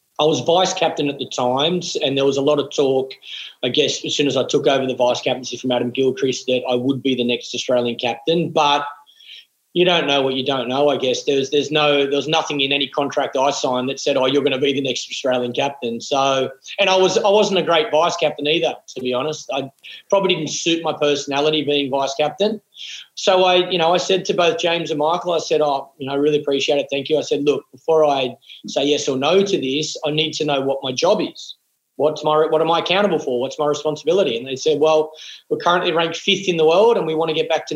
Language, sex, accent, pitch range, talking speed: English, male, Australian, 135-160 Hz, 250 wpm